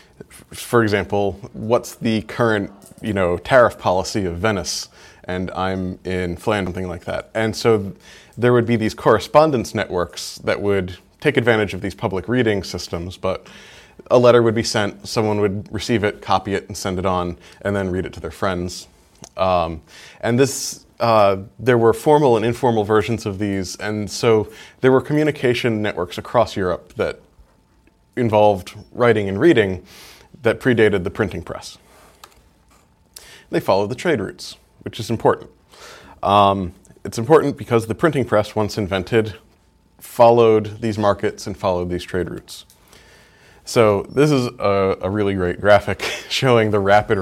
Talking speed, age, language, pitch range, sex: 160 wpm, 20-39, English, 95-110 Hz, male